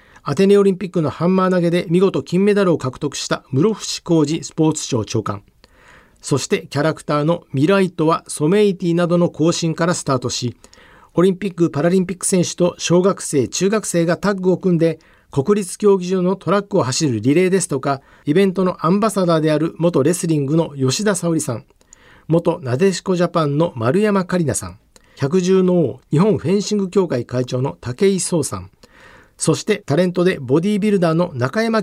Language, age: Japanese, 50-69